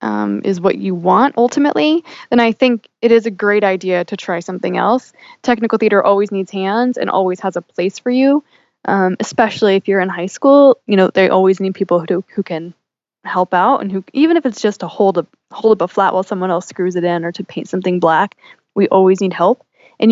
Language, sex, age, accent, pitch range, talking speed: English, female, 10-29, American, 185-230 Hz, 235 wpm